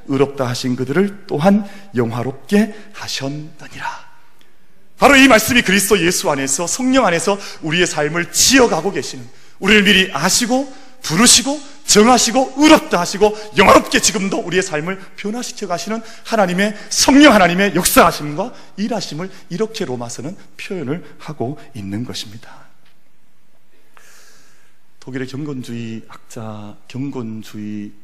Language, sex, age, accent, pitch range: Korean, male, 40-59, native, 130-205 Hz